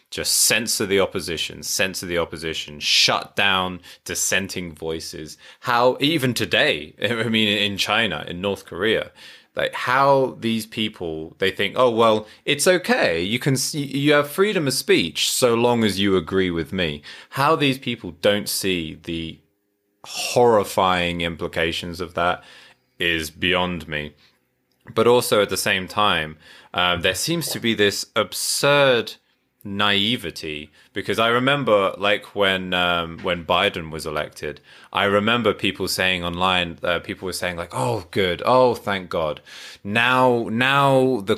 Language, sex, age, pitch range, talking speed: English, male, 20-39, 90-140 Hz, 145 wpm